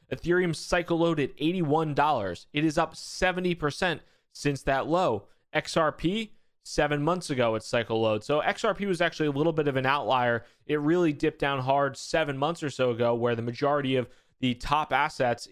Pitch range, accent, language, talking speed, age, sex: 125-160 Hz, American, English, 180 wpm, 20-39, male